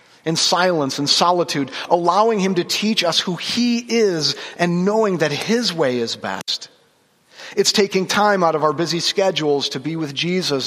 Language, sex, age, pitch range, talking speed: English, male, 40-59, 145-185 Hz, 175 wpm